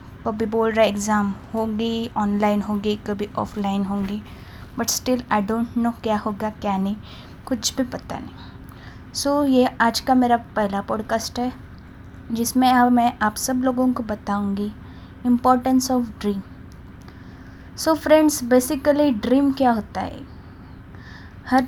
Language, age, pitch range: Hindi, 20-39, 210-260 Hz